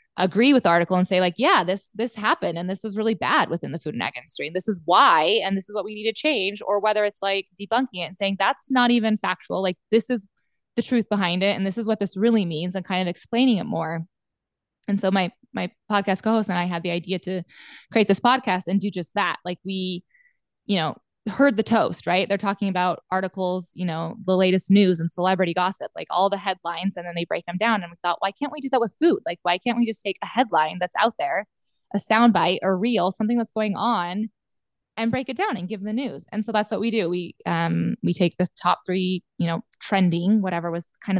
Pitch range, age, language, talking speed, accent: 175-210 Hz, 20-39, English, 250 wpm, American